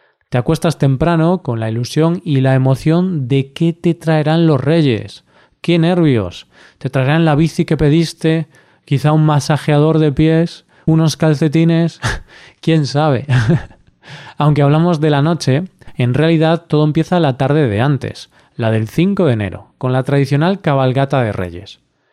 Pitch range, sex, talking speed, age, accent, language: 125-160 Hz, male, 150 wpm, 20-39, Spanish, Spanish